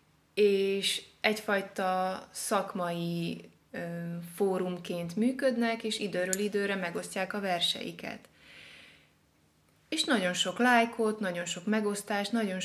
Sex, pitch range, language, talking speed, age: female, 175-225 Hz, Hungarian, 95 wpm, 20-39